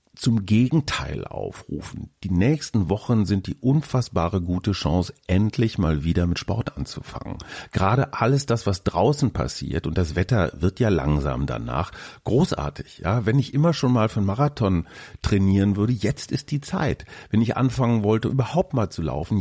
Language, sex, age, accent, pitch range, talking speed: German, male, 40-59, German, 100-135 Hz, 165 wpm